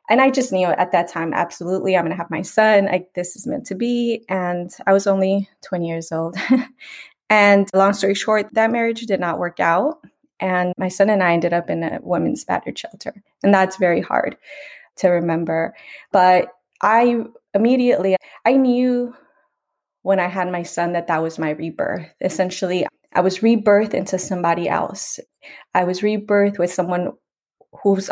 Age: 20-39